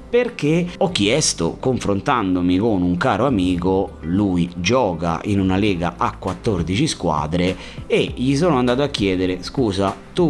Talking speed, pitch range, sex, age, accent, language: 140 wpm, 90-140 Hz, male, 30-49, native, Italian